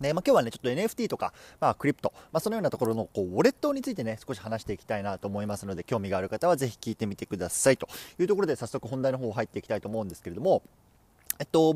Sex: male